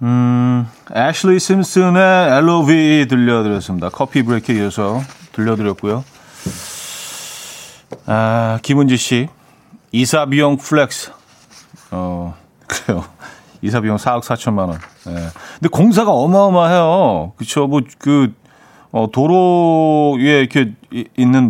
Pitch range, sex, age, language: 110-155 Hz, male, 40-59, Korean